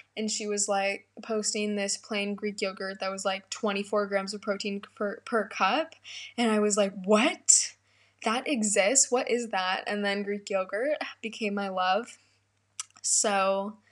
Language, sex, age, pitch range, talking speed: English, female, 10-29, 200-230 Hz, 160 wpm